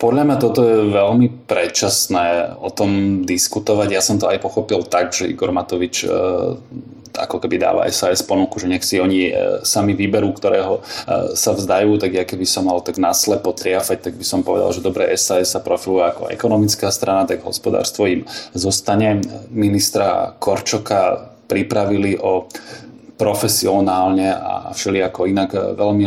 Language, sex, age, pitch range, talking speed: Slovak, male, 20-39, 95-105 Hz, 150 wpm